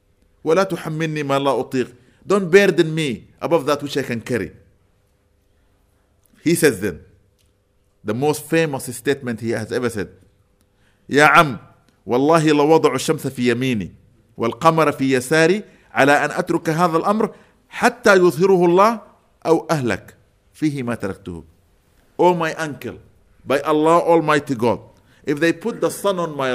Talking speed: 80 wpm